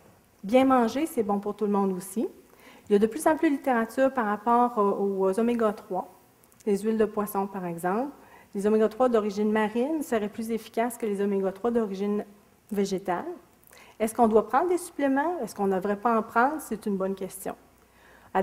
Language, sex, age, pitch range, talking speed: French, female, 40-59, 195-240 Hz, 190 wpm